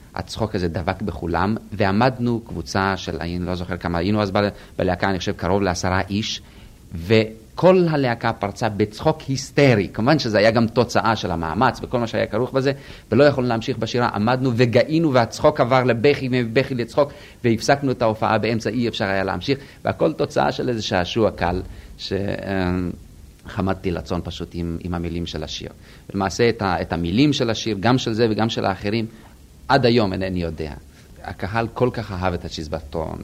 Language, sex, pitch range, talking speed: Hebrew, male, 85-110 Hz, 155 wpm